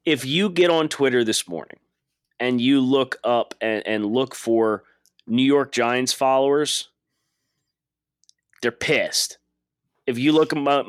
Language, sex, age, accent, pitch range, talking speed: English, male, 30-49, American, 110-145 Hz, 140 wpm